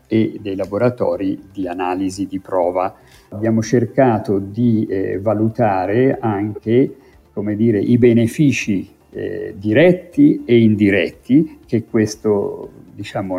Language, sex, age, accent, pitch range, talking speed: Italian, male, 50-69, native, 105-125 Hz, 110 wpm